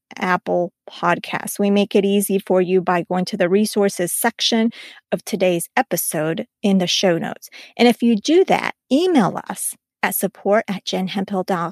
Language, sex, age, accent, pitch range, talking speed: English, female, 30-49, American, 185-225 Hz, 160 wpm